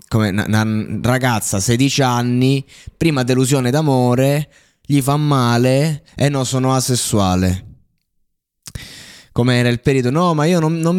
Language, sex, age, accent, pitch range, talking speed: Italian, male, 20-39, native, 105-135 Hz, 130 wpm